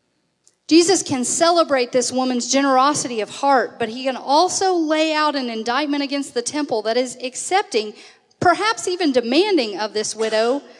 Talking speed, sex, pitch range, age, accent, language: 155 wpm, female, 215-295 Hz, 40-59, American, English